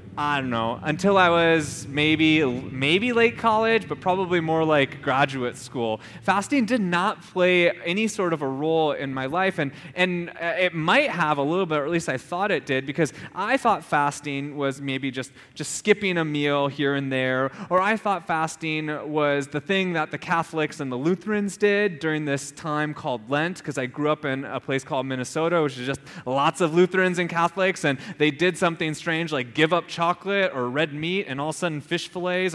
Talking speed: 205 wpm